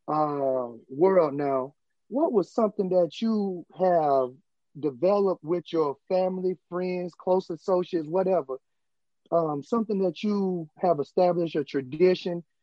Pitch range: 160-200 Hz